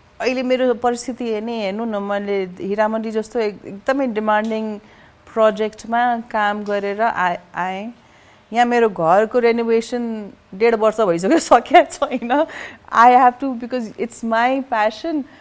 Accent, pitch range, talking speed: native, 205-245 Hz, 130 wpm